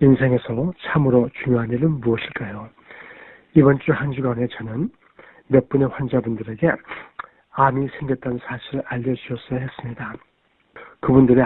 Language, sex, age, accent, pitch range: Korean, male, 60-79, native, 120-150 Hz